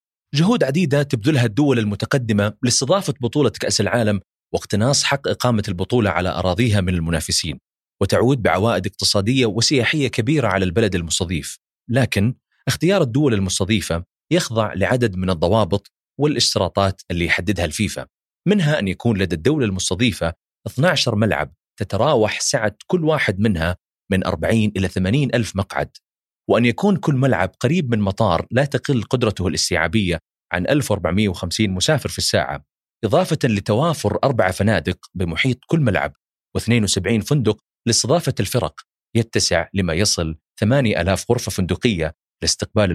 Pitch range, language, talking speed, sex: 95-125 Hz, Arabic, 125 wpm, male